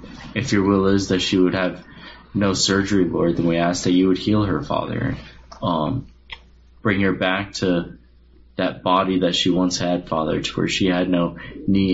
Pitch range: 85-95 Hz